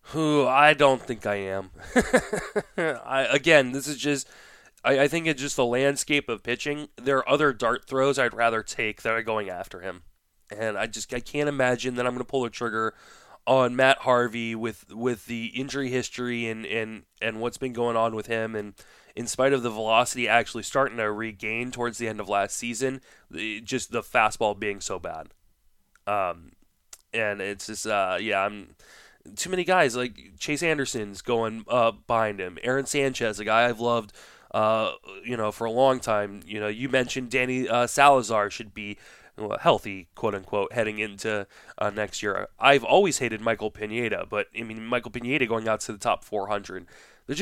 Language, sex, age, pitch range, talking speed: English, male, 20-39, 110-130 Hz, 190 wpm